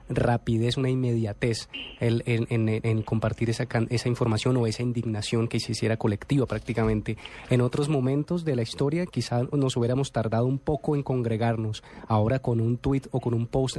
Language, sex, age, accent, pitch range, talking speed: Spanish, male, 20-39, Colombian, 115-130 Hz, 180 wpm